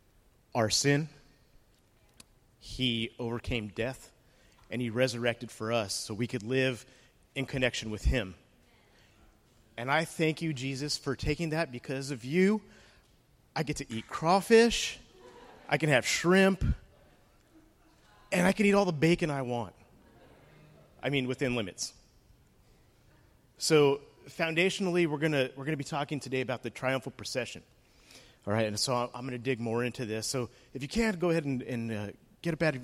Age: 30-49